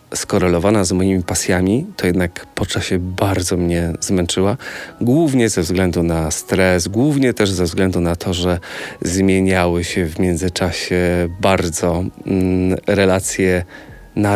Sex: male